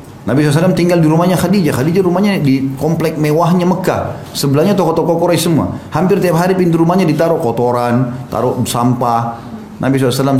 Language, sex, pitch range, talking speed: Indonesian, male, 115-145 Hz, 155 wpm